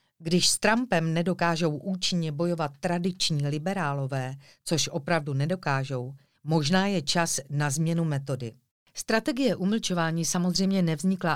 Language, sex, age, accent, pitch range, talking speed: Czech, female, 40-59, native, 140-180 Hz, 110 wpm